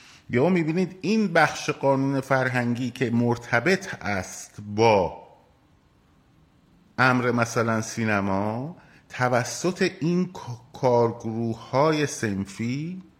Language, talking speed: Persian, 85 wpm